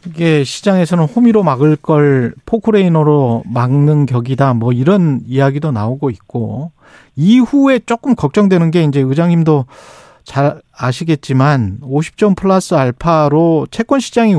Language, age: Korean, 40-59